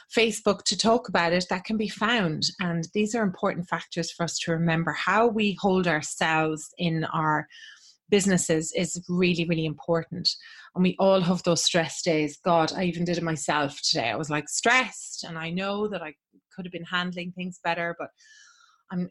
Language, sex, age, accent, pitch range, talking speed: English, female, 30-49, Irish, 170-215 Hz, 190 wpm